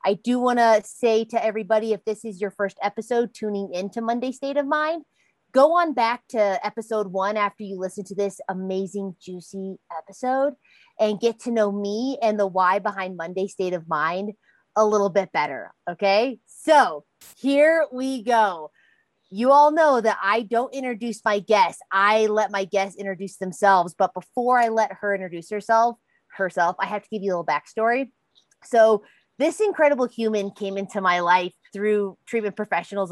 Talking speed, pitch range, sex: 175 wpm, 185-225 Hz, female